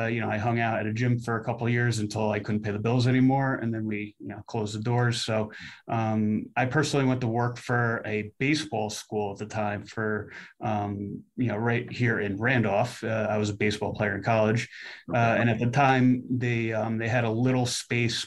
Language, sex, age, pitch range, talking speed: English, male, 30-49, 105-120 Hz, 235 wpm